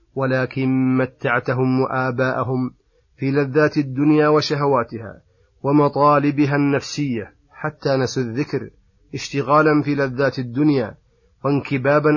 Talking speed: 85 wpm